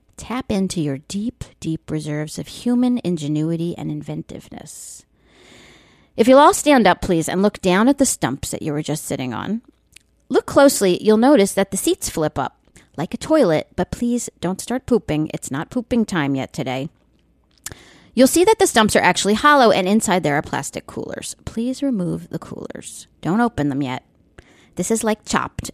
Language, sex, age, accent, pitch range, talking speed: English, female, 40-59, American, 160-245 Hz, 180 wpm